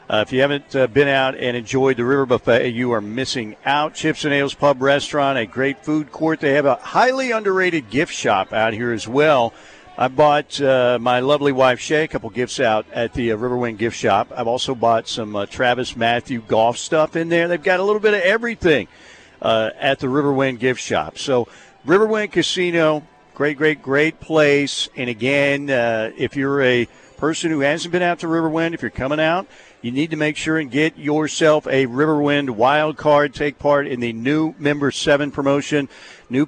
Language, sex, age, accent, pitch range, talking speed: English, male, 50-69, American, 125-155 Hz, 200 wpm